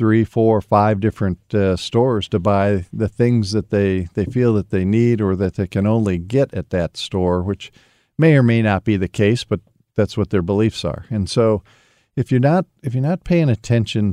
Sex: male